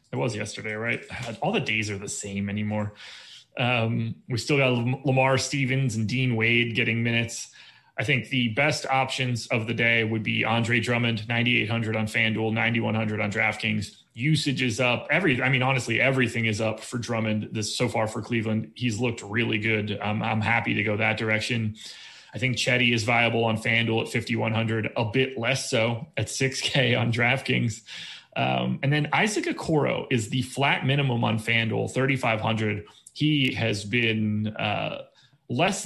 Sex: male